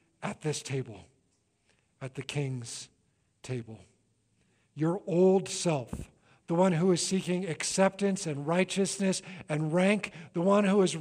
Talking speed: 130 wpm